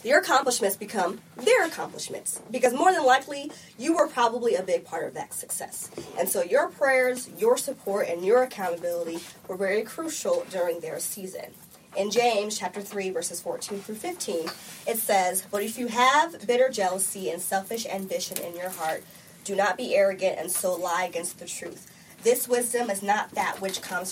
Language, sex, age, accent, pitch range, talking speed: English, female, 20-39, American, 190-260 Hz, 180 wpm